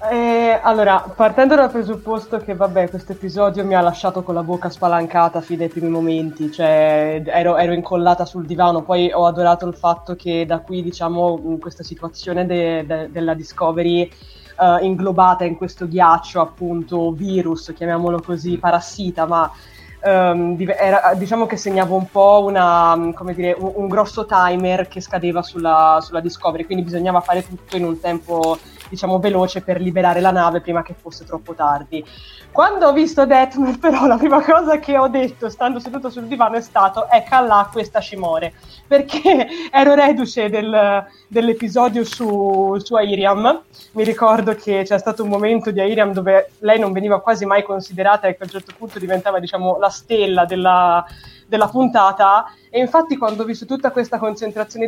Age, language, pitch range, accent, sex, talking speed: 20-39, Italian, 175-225 Hz, native, female, 170 wpm